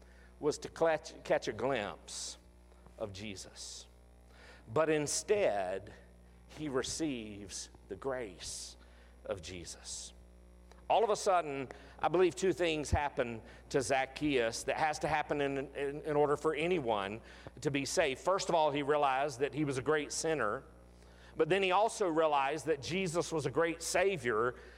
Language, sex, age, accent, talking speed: English, male, 50-69, American, 150 wpm